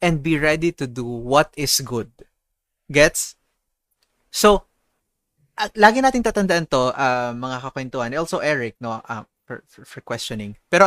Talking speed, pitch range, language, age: 145 wpm, 130-185 Hz, Filipino, 20-39